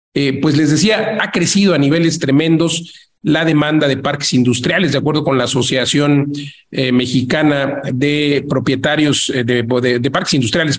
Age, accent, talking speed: 40-59, Mexican, 160 wpm